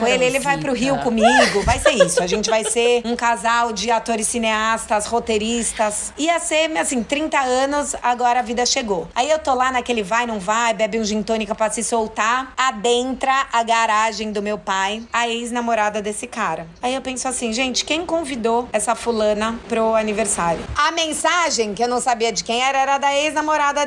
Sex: female